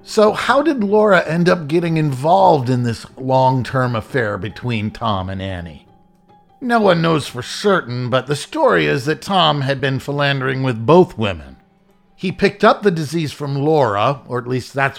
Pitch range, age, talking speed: 120-175 Hz, 50-69, 175 wpm